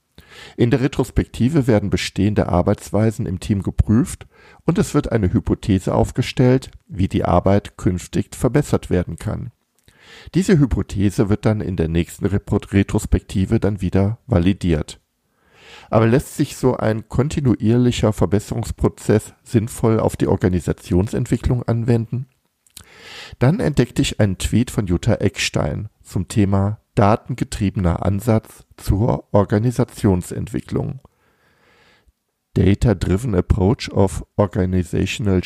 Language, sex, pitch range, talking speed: German, male, 95-120 Hz, 105 wpm